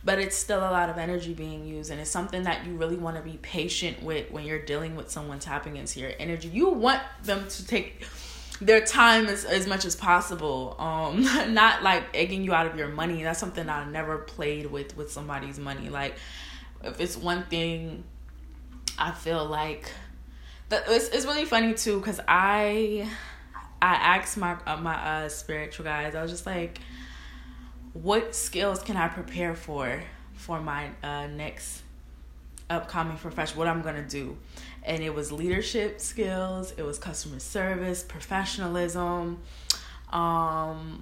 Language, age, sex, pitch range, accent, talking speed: English, 20-39, female, 140-185 Hz, American, 165 wpm